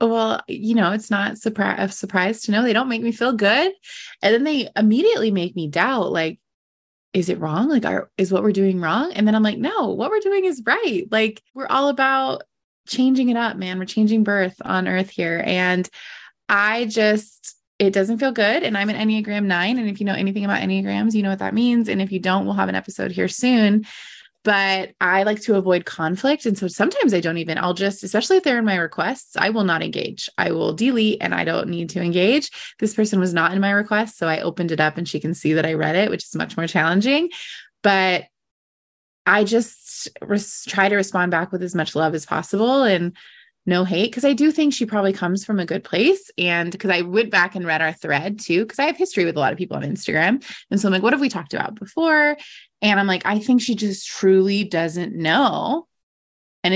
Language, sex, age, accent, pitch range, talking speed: English, female, 20-39, American, 180-230 Hz, 230 wpm